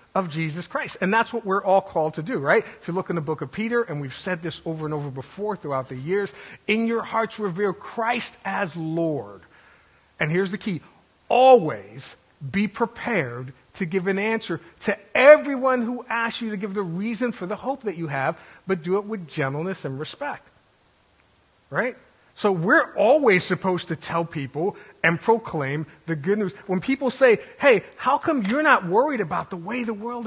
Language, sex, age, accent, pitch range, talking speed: English, male, 40-59, American, 160-220 Hz, 195 wpm